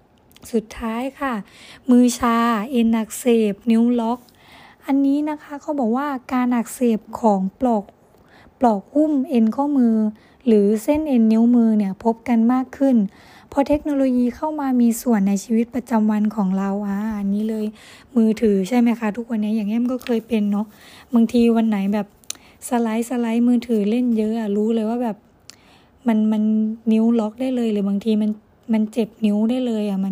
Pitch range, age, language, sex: 215-245 Hz, 20-39, Thai, female